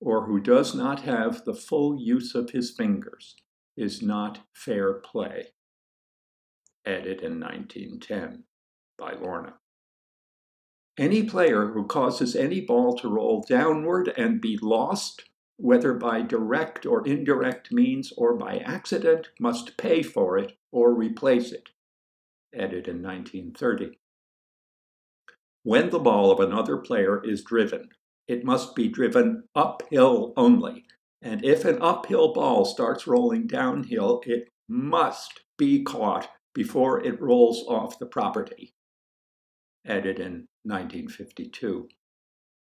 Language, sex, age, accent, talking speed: English, male, 60-79, American, 120 wpm